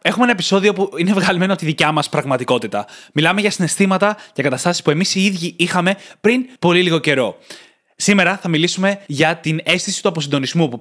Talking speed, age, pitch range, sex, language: 190 wpm, 20-39, 145-180 Hz, male, Greek